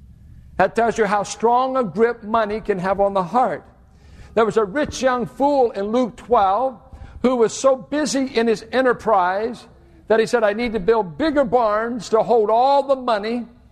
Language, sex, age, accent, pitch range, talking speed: English, male, 60-79, American, 205-260 Hz, 190 wpm